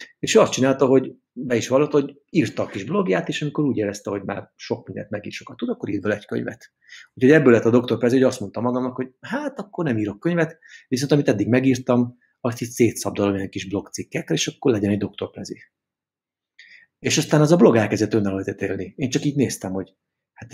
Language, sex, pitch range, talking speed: Hungarian, male, 110-140 Hz, 215 wpm